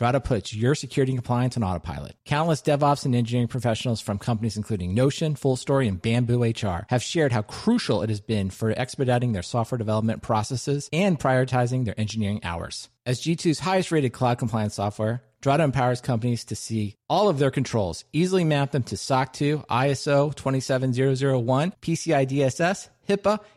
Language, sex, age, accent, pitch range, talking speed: English, male, 40-59, American, 115-150 Hz, 165 wpm